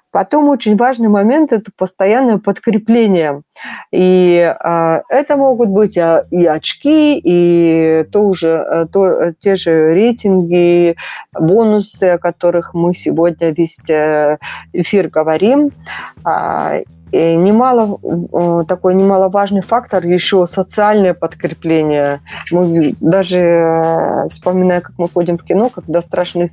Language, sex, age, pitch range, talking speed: Russian, female, 30-49, 170-205 Hz, 95 wpm